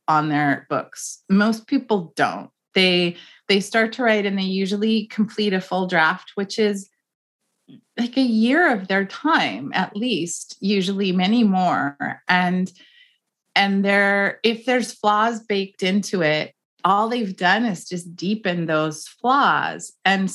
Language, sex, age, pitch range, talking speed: English, female, 30-49, 180-225 Hz, 145 wpm